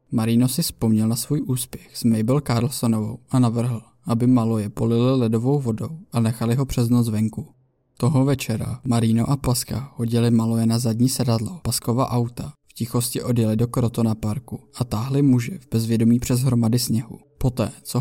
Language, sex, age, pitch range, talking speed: Czech, male, 20-39, 115-130 Hz, 170 wpm